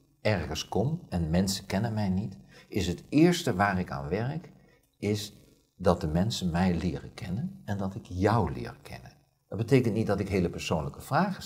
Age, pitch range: 50-69, 90-110 Hz